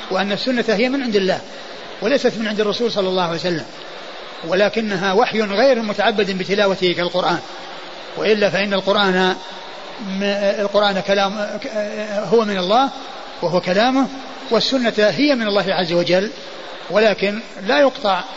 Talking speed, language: 125 wpm, Arabic